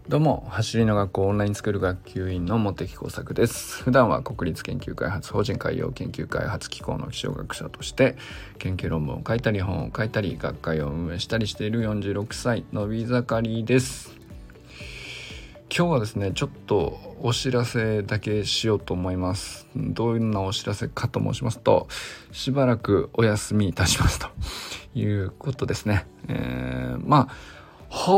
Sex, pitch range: male, 100-130 Hz